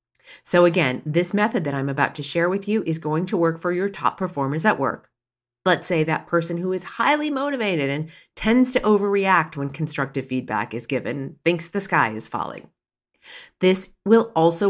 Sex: female